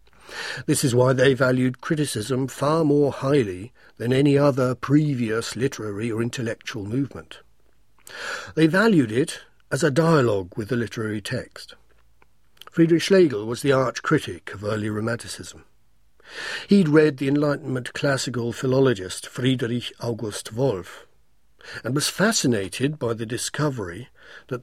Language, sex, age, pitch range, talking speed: English, male, 60-79, 120-155 Hz, 125 wpm